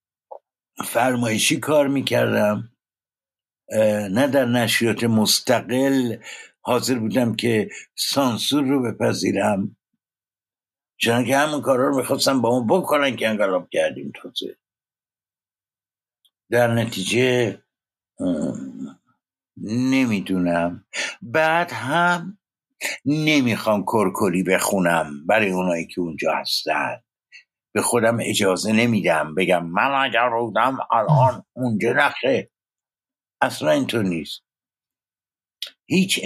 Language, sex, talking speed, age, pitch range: Persian, male, 90 wpm, 60-79, 105-135 Hz